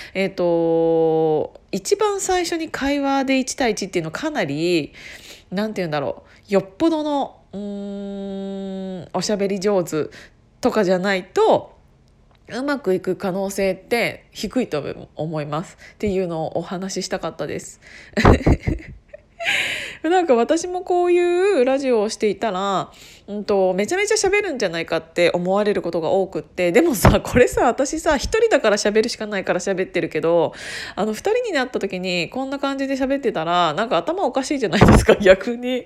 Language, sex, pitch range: Japanese, female, 180-270 Hz